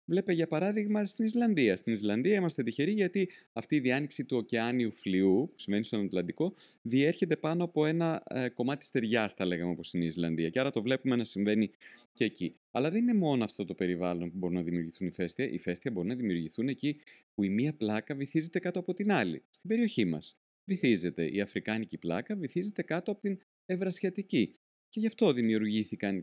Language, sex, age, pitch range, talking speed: Greek, male, 30-49, 95-155 Hz, 190 wpm